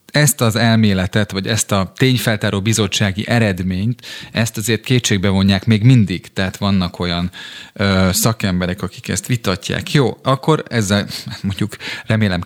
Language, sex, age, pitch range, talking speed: Hungarian, male, 30-49, 95-115 Hz, 130 wpm